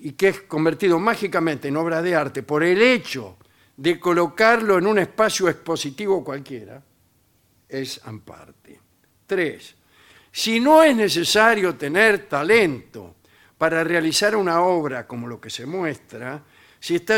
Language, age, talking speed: Spanish, 60-79, 135 wpm